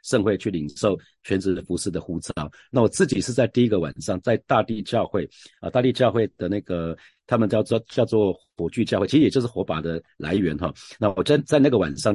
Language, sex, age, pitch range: Chinese, male, 50-69, 90-115 Hz